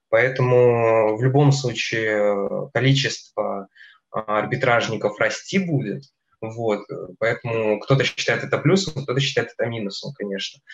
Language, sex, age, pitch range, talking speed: Russian, male, 20-39, 105-125 Hz, 105 wpm